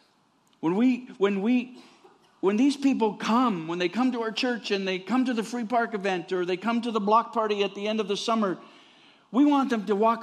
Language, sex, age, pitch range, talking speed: English, male, 50-69, 180-260 Hz, 235 wpm